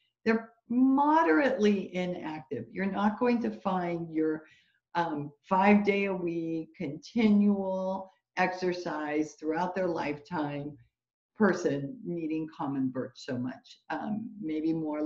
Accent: American